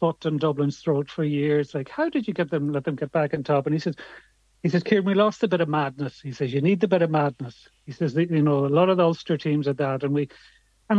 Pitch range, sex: 145-170 Hz, male